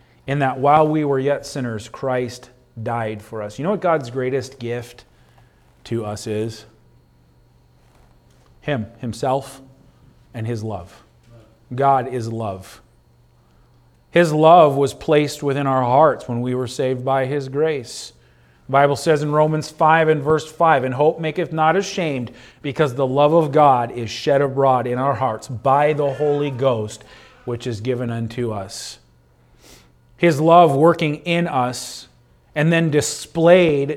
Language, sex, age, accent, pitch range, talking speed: English, male, 40-59, American, 115-155 Hz, 150 wpm